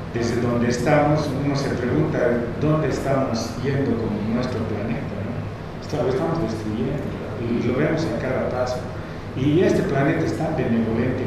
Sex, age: male, 40-59